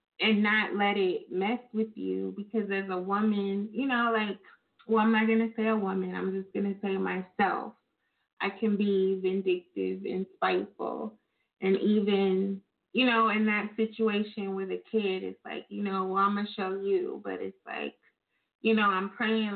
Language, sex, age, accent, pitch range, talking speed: English, female, 20-39, American, 195-220 Hz, 185 wpm